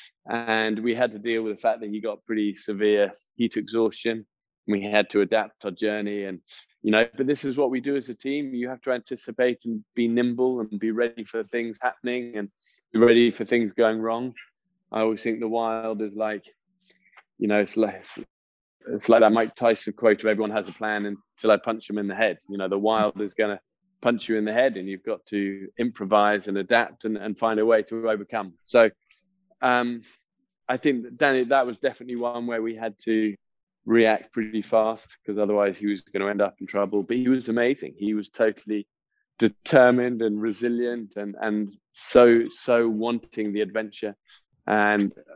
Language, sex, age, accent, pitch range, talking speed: English, male, 20-39, British, 105-120 Hz, 200 wpm